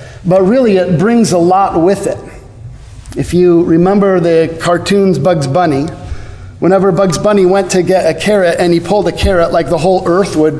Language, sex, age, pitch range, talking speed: English, male, 50-69, 160-195 Hz, 185 wpm